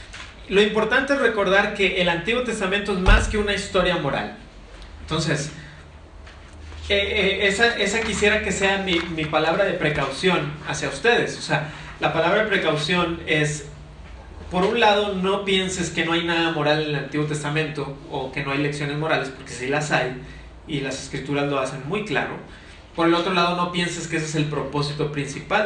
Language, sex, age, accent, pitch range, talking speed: Spanish, male, 40-59, Mexican, 125-170 Hz, 185 wpm